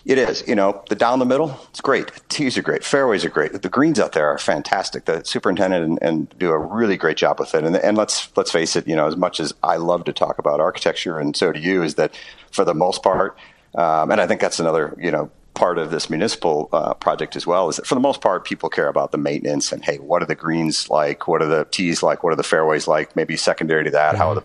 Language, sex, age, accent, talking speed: English, male, 40-59, American, 270 wpm